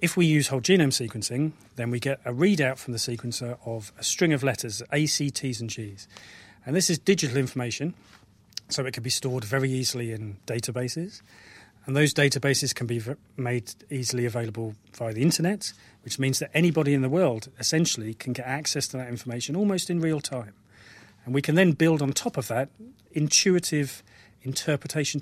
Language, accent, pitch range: English, British, 115-145 Hz